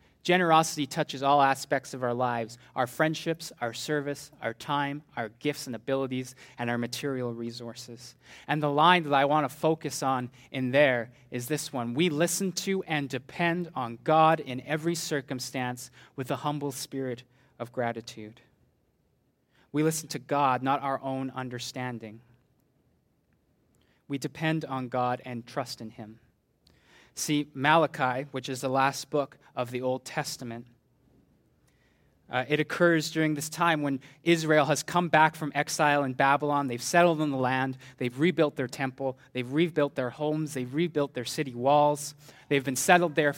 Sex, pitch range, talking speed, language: male, 125-155 Hz, 160 wpm, English